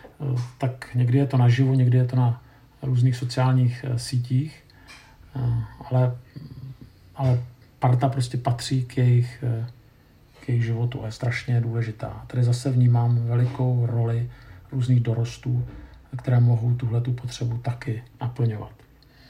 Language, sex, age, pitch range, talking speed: Czech, male, 50-69, 120-140 Hz, 130 wpm